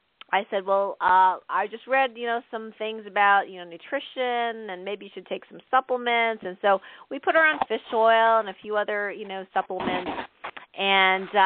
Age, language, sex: 40-59, English, female